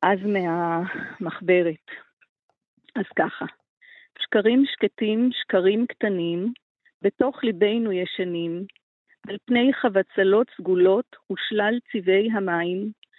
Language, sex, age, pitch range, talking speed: Hebrew, female, 40-59, 195-240 Hz, 80 wpm